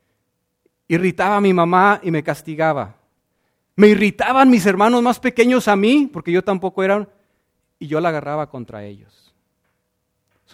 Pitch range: 150-210 Hz